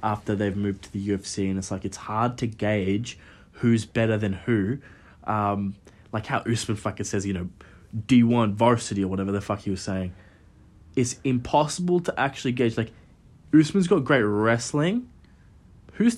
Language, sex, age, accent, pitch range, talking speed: English, male, 20-39, Australian, 95-130 Hz, 170 wpm